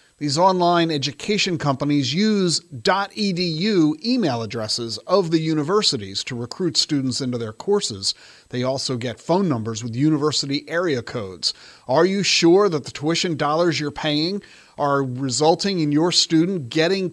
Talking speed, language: 145 wpm, English